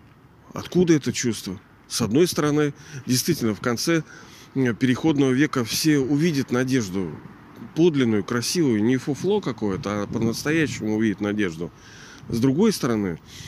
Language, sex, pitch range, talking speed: Russian, male, 115-145 Hz, 115 wpm